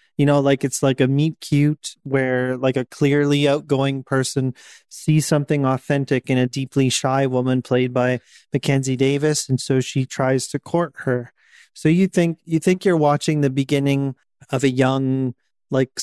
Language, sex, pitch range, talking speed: English, male, 130-150 Hz, 170 wpm